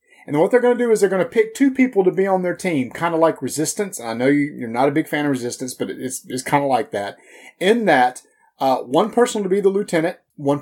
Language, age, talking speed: English, 30-49, 270 wpm